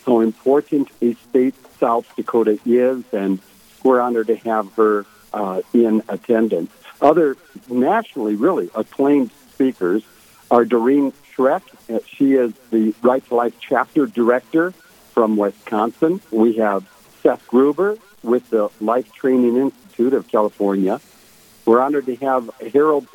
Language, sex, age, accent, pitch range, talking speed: English, male, 60-79, American, 110-135 Hz, 130 wpm